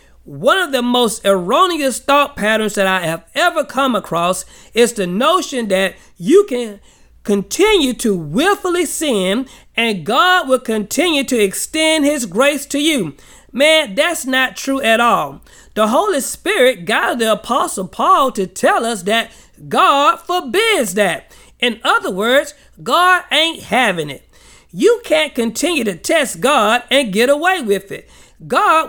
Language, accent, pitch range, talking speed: English, American, 225-315 Hz, 150 wpm